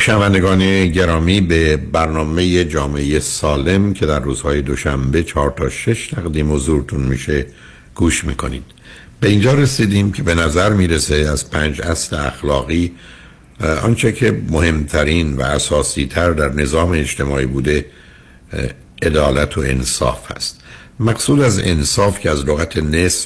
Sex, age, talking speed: male, 60-79, 130 wpm